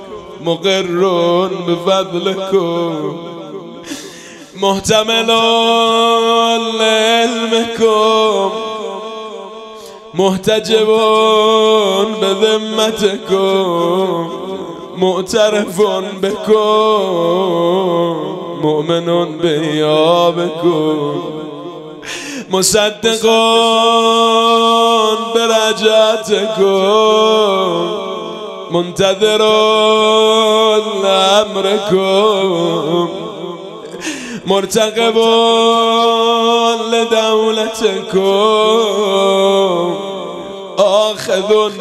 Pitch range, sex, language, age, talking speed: 190-225 Hz, male, Persian, 20-39, 35 wpm